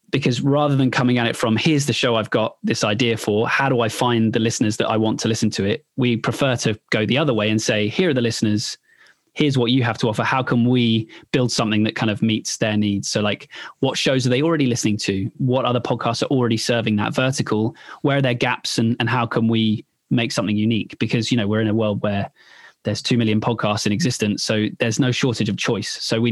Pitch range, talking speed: 110-125 Hz, 250 wpm